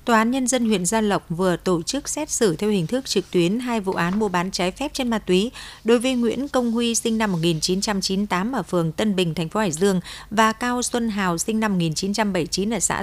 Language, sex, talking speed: Vietnamese, female, 240 wpm